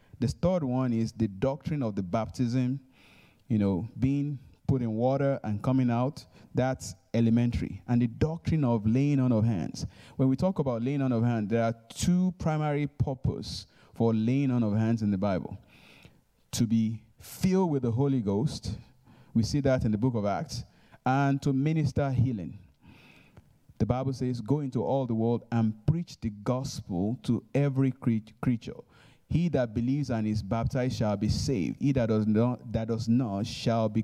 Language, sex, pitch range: English, male, 110-135 Hz